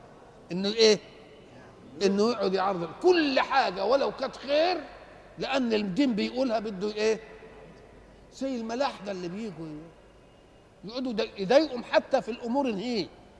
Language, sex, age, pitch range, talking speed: Arabic, male, 50-69, 180-250 Hz, 115 wpm